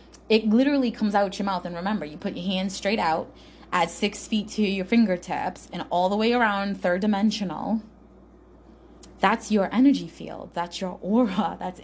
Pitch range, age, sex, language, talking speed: 180-220 Hz, 20-39, female, English, 175 wpm